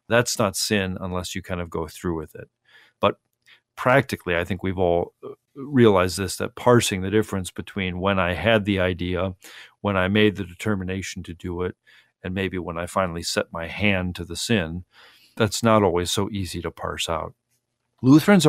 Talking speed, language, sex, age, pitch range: 185 wpm, English, male, 40-59, 90-115 Hz